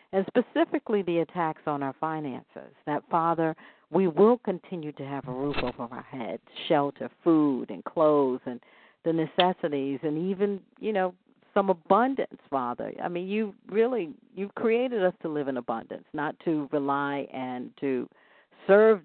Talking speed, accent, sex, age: 160 wpm, American, female, 50-69